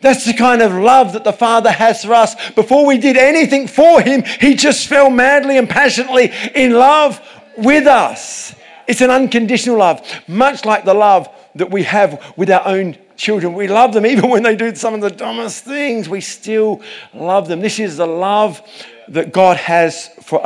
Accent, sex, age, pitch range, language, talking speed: British, male, 50-69, 135-225 Hz, English, 195 wpm